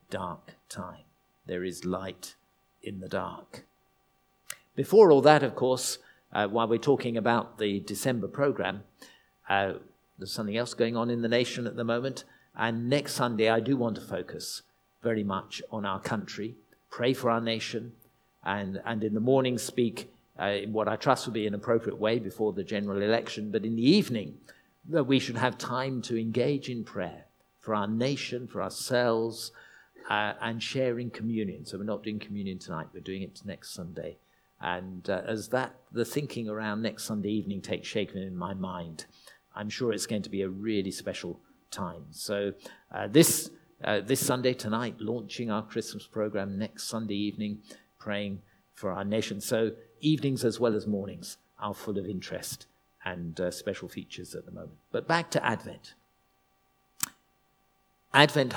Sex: male